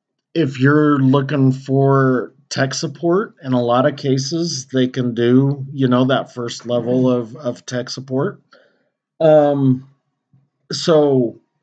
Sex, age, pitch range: male, 40-59, 125-150 Hz